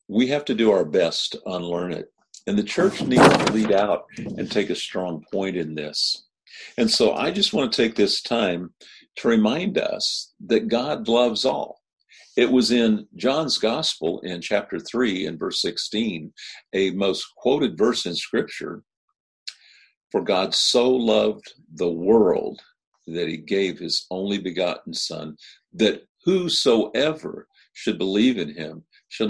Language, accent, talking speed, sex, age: English, American, 155 wpm, male, 50-69